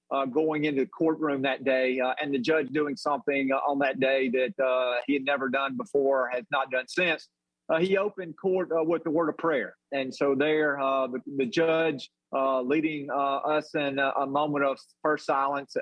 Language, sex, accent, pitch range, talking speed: English, male, American, 130-145 Hz, 215 wpm